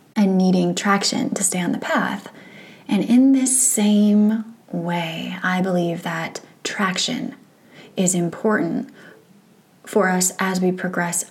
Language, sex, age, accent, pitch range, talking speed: English, female, 20-39, American, 180-215 Hz, 125 wpm